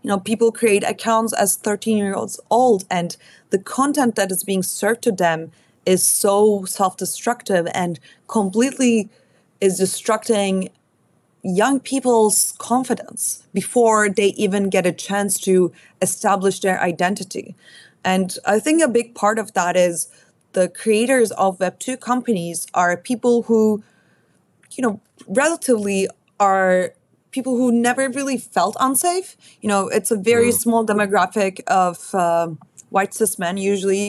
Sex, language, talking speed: female, English, 135 wpm